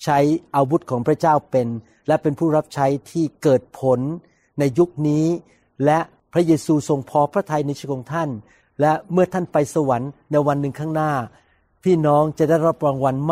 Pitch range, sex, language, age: 140-165 Hz, male, Thai, 60-79